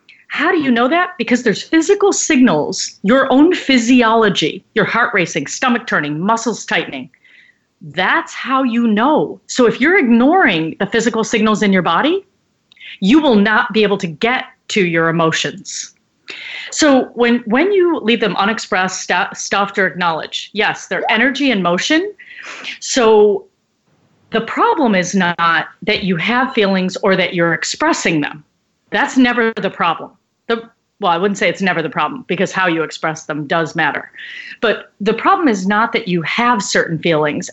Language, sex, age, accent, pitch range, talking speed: English, female, 40-59, American, 185-265 Hz, 165 wpm